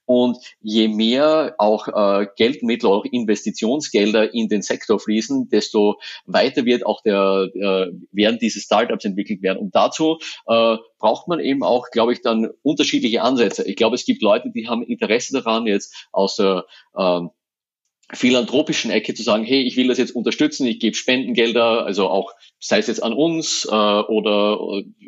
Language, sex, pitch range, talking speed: German, male, 105-125 Hz, 165 wpm